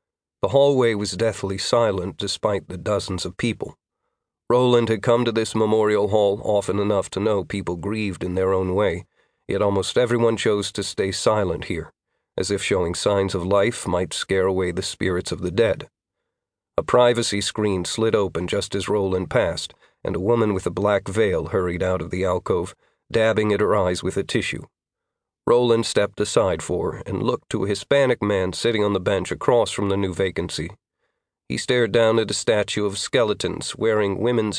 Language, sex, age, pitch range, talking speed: English, male, 40-59, 95-115 Hz, 185 wpm